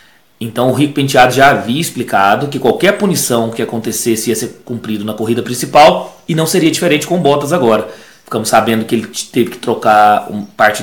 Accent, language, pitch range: Brazilian, Portuguese, 115-135 Hz